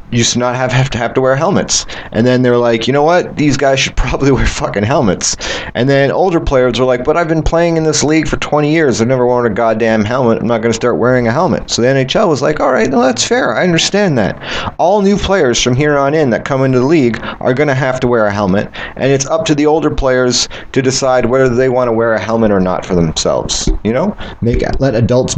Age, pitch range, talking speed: 30-49, 120-155 Hz, 265 wpm